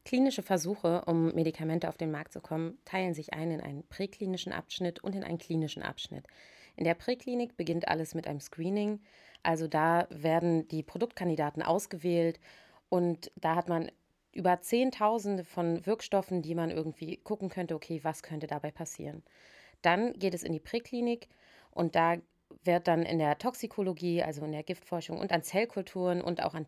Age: 30-49